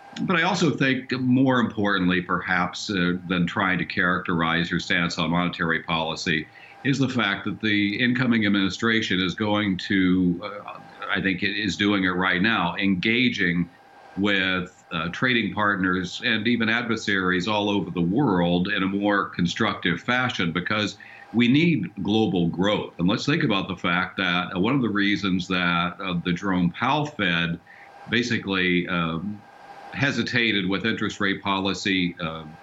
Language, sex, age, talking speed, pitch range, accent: English, male, 50-69, 155 wpm, 90-105 Hz, American